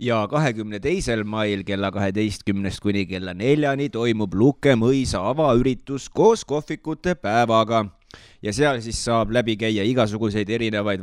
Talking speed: 130 wpm